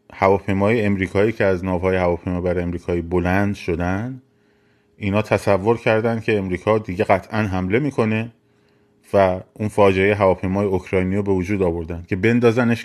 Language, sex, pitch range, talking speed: Persian, male, 95-115 Hz, 135 wpm